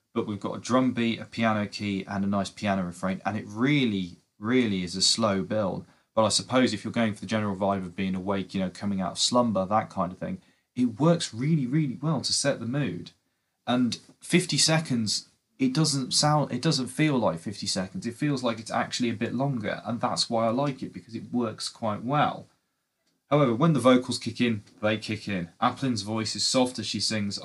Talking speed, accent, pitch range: 220 wpm, British, 95-125 Hz